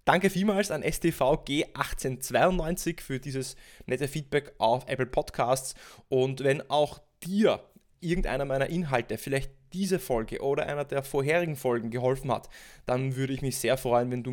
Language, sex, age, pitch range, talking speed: German, male, 20-39, 125-160 Hz, 155 wpm